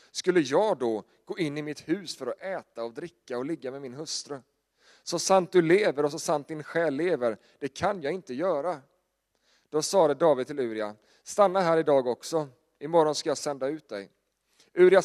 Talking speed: 200 wpm